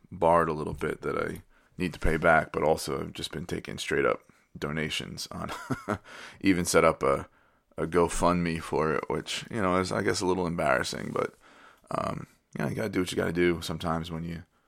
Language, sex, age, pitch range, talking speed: English, male, 20-39, 80-95 Hz, 205 wpm